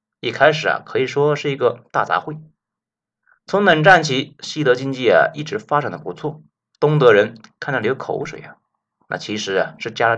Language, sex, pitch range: Chinese, male, 145-230 Hz